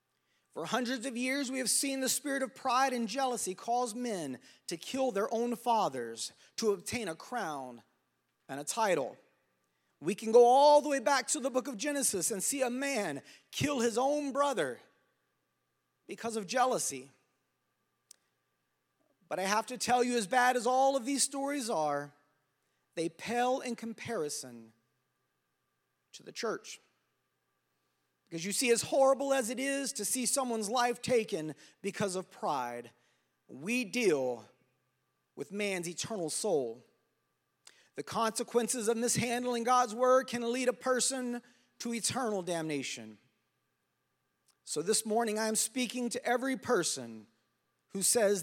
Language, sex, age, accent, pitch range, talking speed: English, male, 30-49, American, 180-260 Hz, 145 wpm